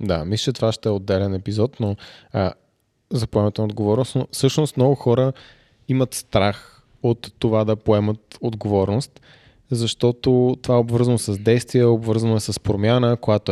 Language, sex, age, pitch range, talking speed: Bulgarian, male, 20-39, 110-125 Hz, 150 wpm